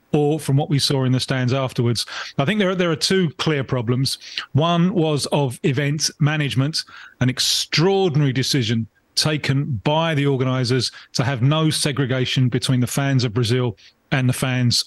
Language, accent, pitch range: English, British, 135-170 Hz